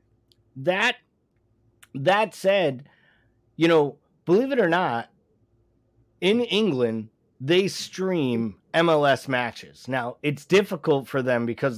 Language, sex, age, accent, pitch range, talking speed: English, male, 30-49, American, 125-185 Hz, 105 wpm